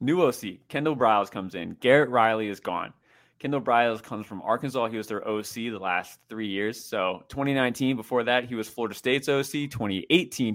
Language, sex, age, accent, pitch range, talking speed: English, male, 20-39, American, 105-130 Hz, 190 wpm